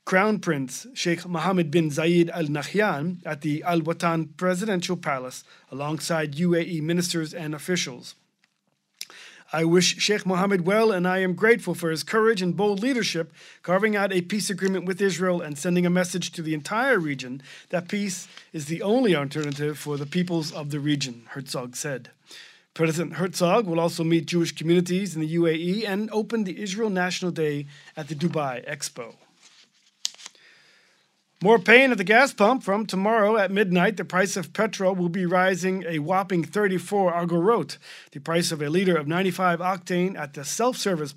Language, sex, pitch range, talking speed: English, male, 165-195 Hz, 165 wpm